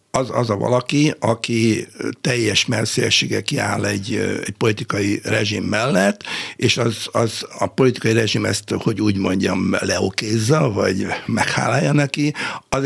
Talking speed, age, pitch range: 130 wpm, 60-79, 110-130 Hz